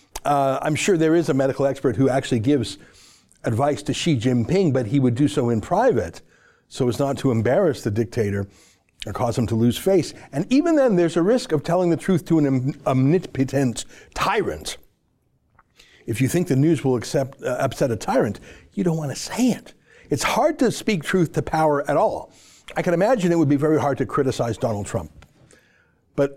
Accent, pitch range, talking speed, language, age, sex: American, 135-175 Hz, 200 wpm, English, 60-79, male